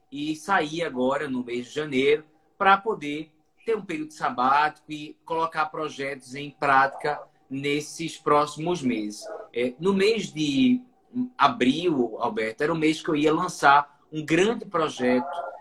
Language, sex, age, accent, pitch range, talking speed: Portuguese, male, 20-39, Brazilian, 150-195 Hz, 140 wpm